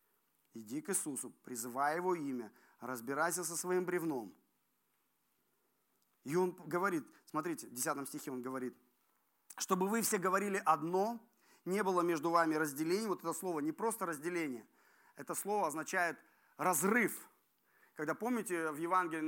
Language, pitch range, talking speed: Russian, 170-230 Hz, 135 wpm